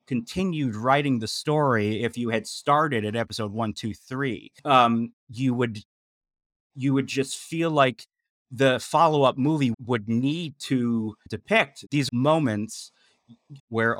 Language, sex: English, male